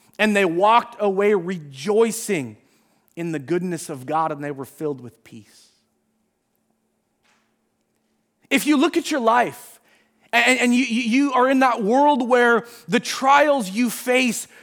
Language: English